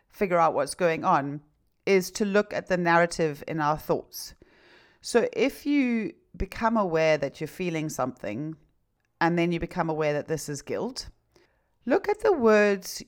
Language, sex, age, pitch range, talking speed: English, female, 40-59, 150-200 Hz, 165 wpm